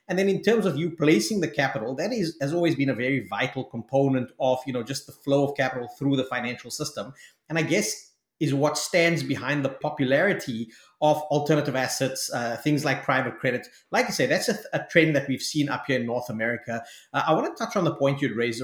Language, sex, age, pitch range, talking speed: English, male, 30-49, 125-145 Hz, 235 wpm